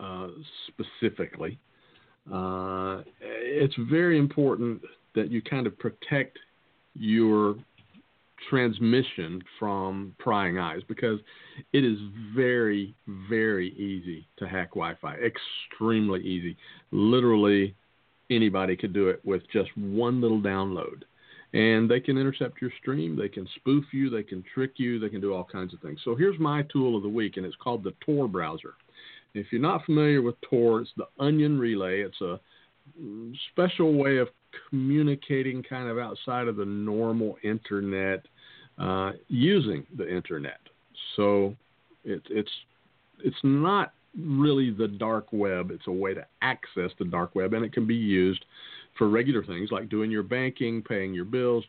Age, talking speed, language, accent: 50-69, 150 wpm, English, American